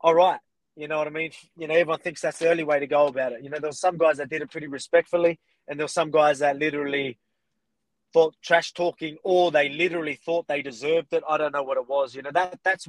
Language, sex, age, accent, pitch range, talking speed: English, male, 20-39, Australian, 135-160 Hz, 265 wpm